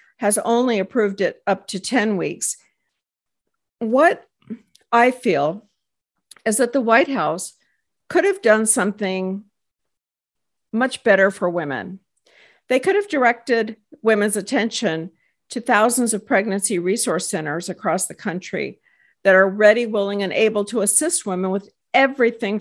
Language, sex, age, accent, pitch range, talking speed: English, female, 50-69, American, 200-250 Hz, 135 wpm